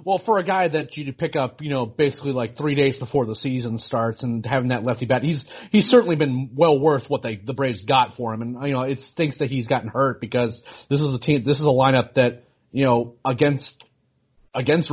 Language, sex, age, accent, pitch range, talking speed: English, male, 30-49, American, 130-155 Hz, 235 wpm